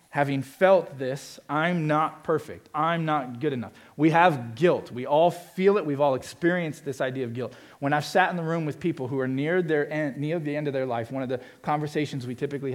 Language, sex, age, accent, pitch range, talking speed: English, male, 40-59, American, 120-155 Hz, 220 wpm